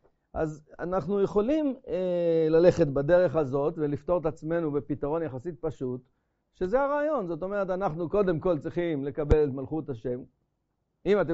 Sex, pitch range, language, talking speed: male, 130-170 Hz, Hebrew, 145 wpm